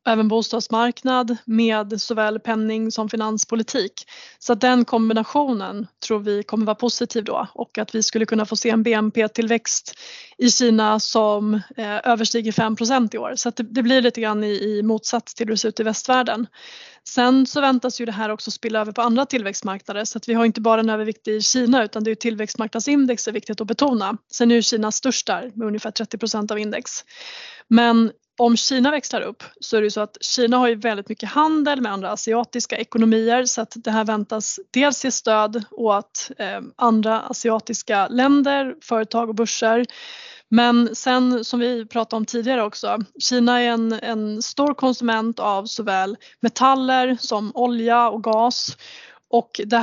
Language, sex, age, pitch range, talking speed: Swedish, female, 20-39, 220-245 Hz, 180 wpm